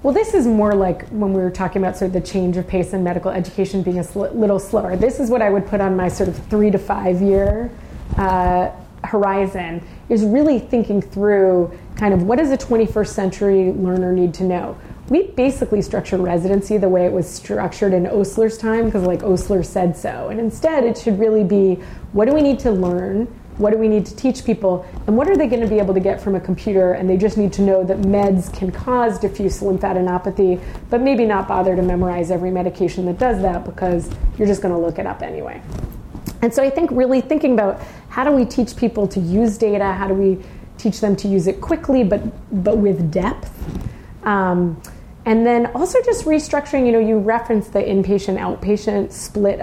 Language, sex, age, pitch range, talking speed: English, female, 30-49, 185-225 Hz, 215 wpm